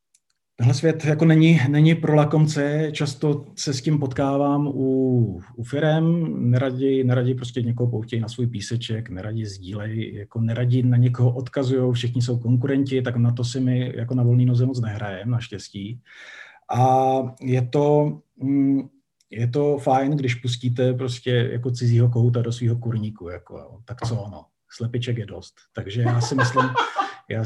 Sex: male